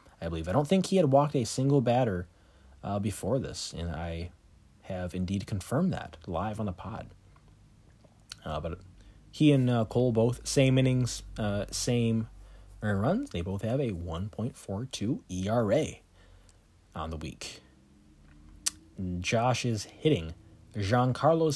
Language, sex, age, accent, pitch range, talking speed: English, male, 30-49, American, 90-120 Hz, 135 wpm